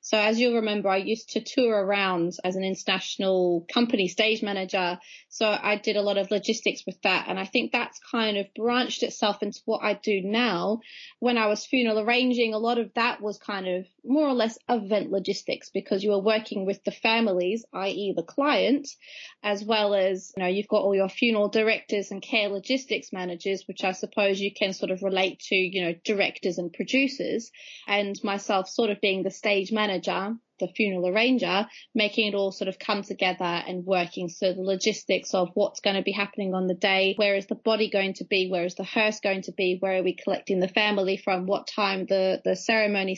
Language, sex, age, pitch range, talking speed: English, female, 20-39, 190-225 Hz, 210 wpm